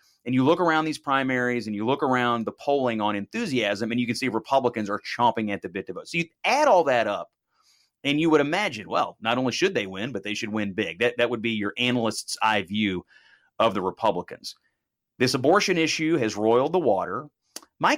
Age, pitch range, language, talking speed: 30-49, 110-155 Hz, English, 220 wpm